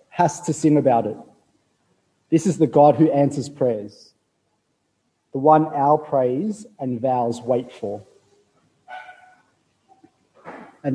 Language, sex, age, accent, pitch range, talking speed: English, male, 30-49, Australian, 125-150 Hz, 115 wpm